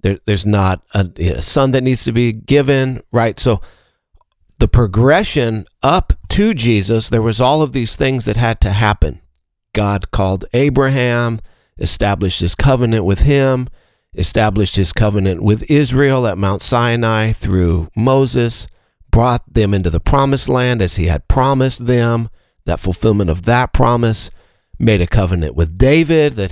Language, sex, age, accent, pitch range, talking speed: English, male, 50-69, American, 90-120 Hz, 150 wpm